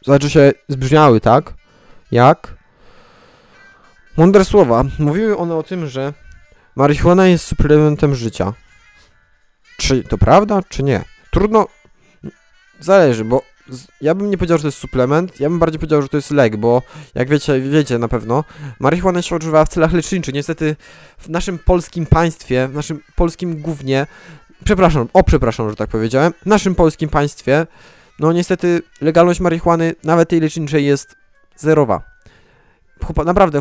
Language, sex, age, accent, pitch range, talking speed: Polish, male, 20-39, native, 145-180 Hz, 150 wpm